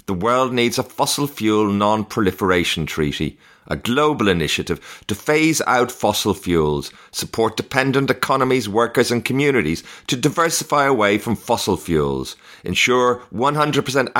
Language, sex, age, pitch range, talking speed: English, male, 40-59, 90-130 Hz, 125 wpm